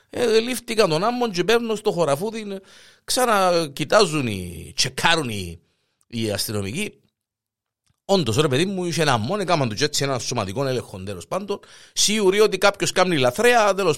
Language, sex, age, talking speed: Greek, male, 50-69, 145 wpm